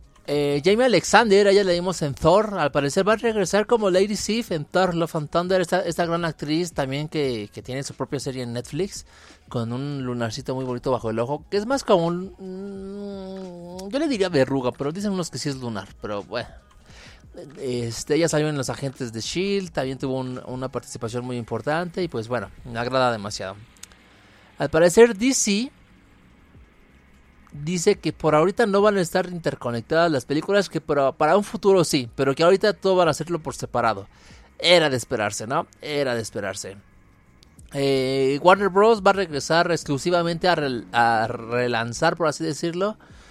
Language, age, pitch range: Spanish, 30-49, 125-185 Hz